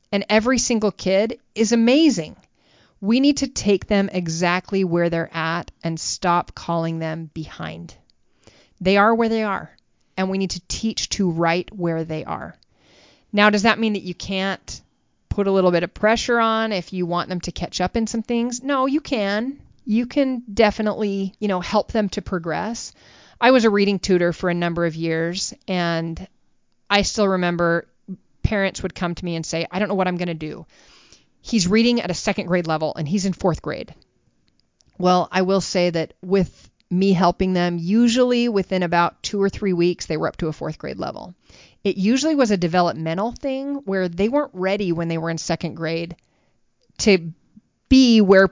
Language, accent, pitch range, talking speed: English, American, 170-215 Hz, 190 wpm